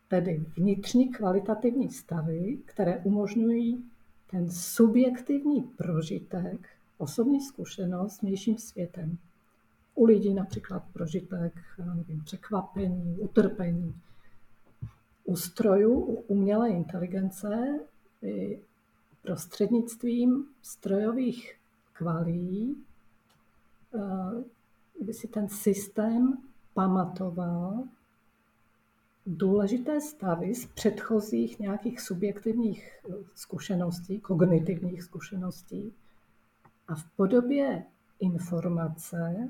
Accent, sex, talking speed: native, female, 70 wpm